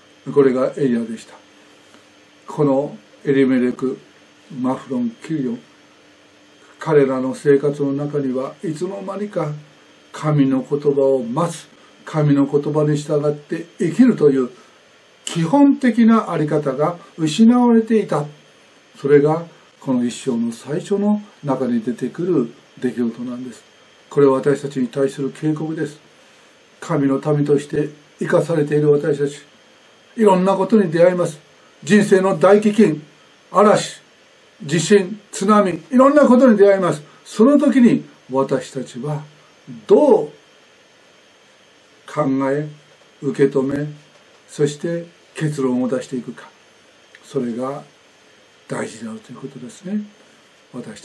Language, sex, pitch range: Japanese, male, 135-195 Hz